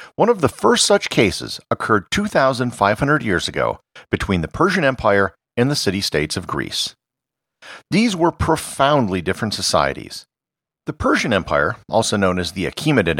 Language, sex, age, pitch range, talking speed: English, male, 50-69, 95-145 Hz, 145 wpm